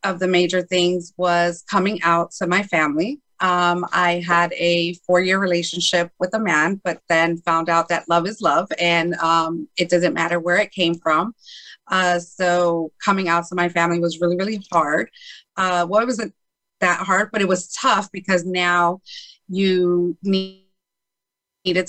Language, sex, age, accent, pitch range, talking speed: English, female, 30-49, American, 170-185 Hz, 170 wpm